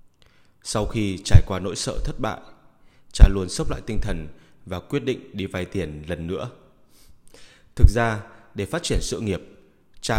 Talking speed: 175 wpm